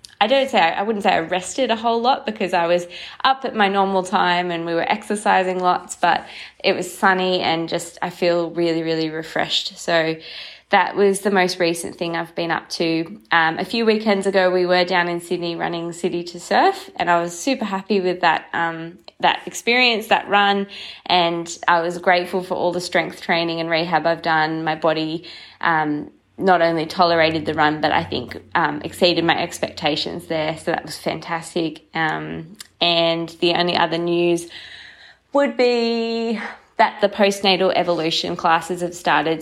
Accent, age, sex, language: Australian, 20-39, female, English